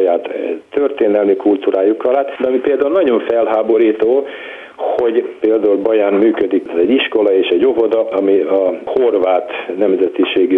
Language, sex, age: Hungarian, male, 60-79